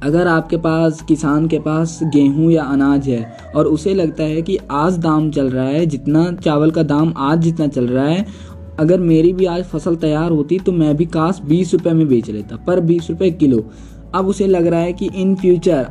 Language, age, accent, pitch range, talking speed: Hindi, 20-39, native, 150-175 Hz, 215 wpm